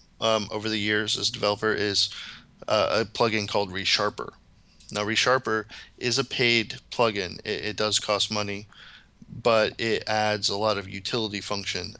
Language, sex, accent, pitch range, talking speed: English, male, American, 100-115 Hz, 160 wpm